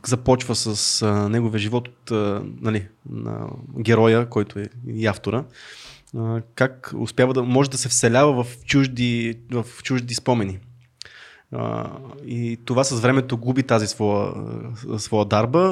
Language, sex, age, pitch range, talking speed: Bulgarian, male, 20-39, 115-135 Hz, 140 wpm